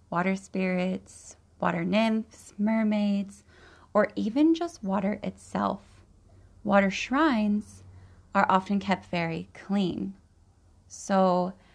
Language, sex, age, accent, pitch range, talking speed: English, female, 20-39, American, 150-205 Hz, 90 wpm